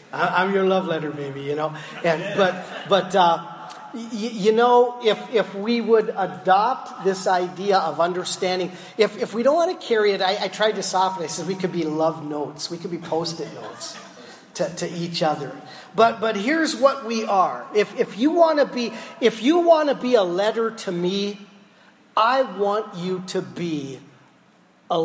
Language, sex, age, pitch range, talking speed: English, male, 40-59, 175-225 Hz, 180 wpm